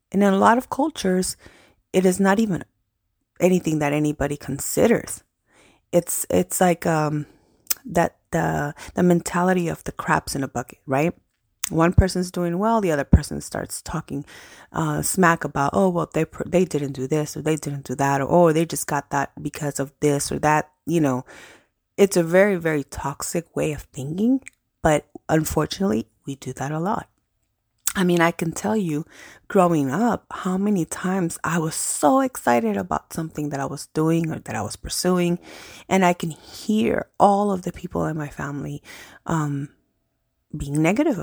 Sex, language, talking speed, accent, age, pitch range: female, English, 180 wpm, American, 30-49, 140-180 Hz